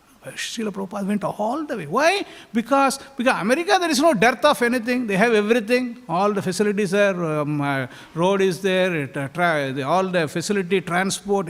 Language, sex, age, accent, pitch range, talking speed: English, male, 50-69, Indian, 185-250 Hz, 190 wpm